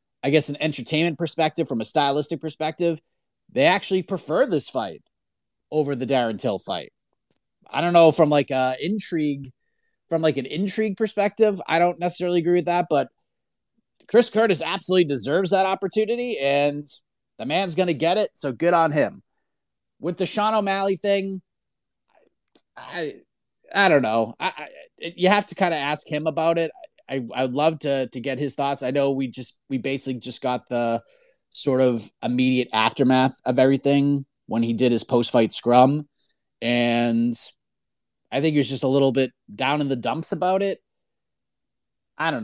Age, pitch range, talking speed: 30-49, 130-175 Hz, 170 wpm